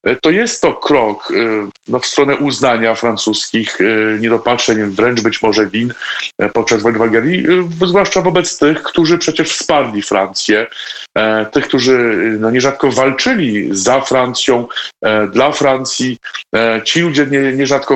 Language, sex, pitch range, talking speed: Polish, male, 115-145 Hz, 115 wpm